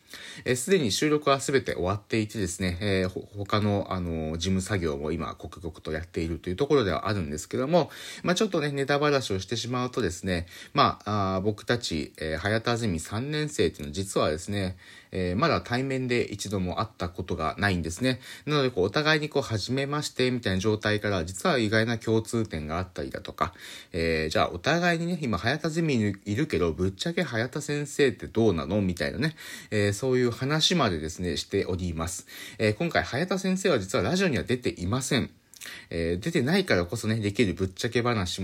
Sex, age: male, 30-49